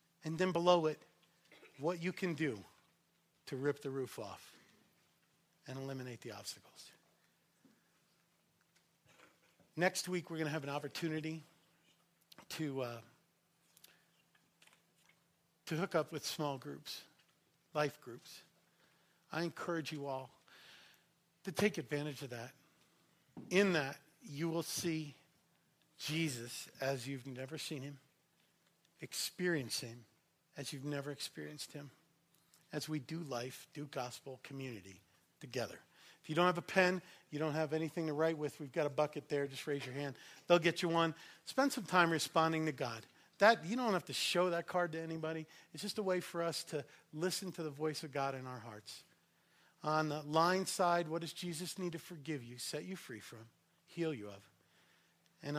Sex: male